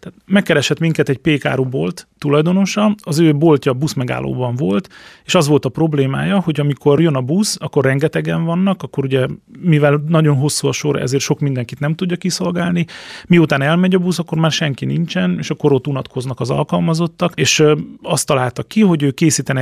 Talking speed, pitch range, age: 180 wpm, 135-165 Hz, 30-49